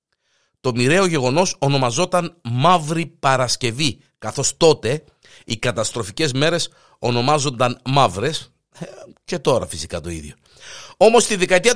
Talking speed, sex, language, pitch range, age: 105 wpm, male, Greek, 110-160 Hz, 50-69